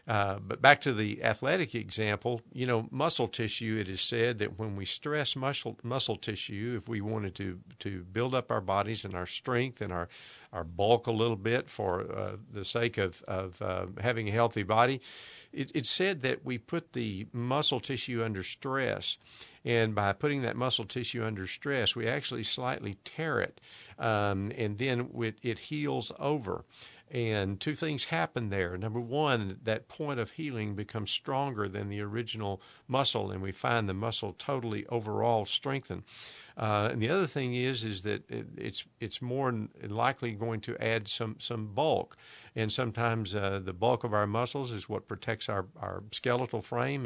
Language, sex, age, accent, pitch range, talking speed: English, male, 50-69, American, 105-125 Hz, 180 wpm